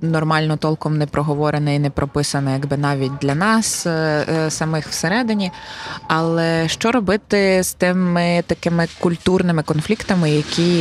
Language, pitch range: Ukrainian, 140-165 Hz